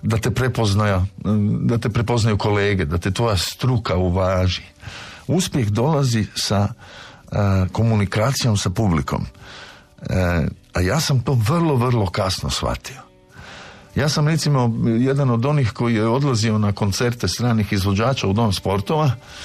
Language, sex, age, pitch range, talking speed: Croatian, male, 50-69, 95-125 Hz, 135 wpm